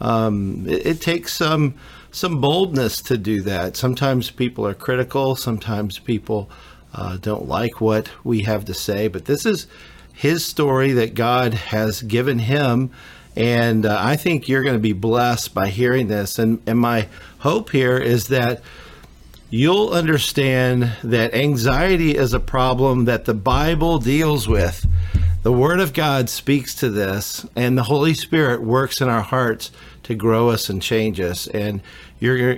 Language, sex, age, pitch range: English, male, 50-69, 110-140 Hz